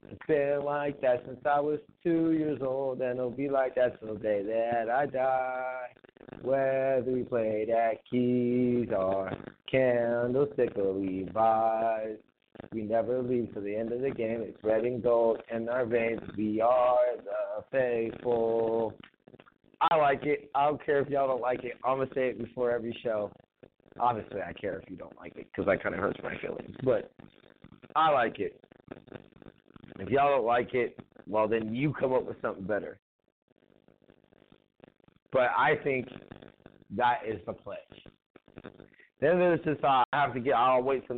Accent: American